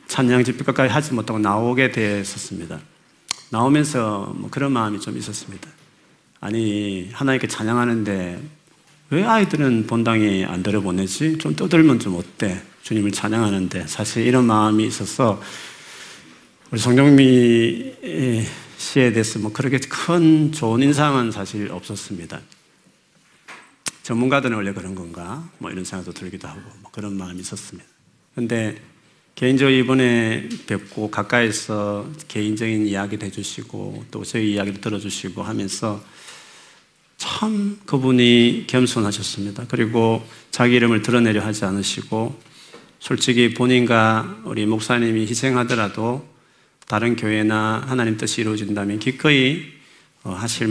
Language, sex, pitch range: Korean, male, 105-125 Hz